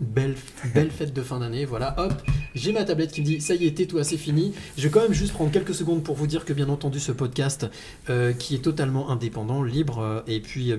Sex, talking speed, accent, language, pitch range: male, 250 wpm, French, French, 130-160 Hz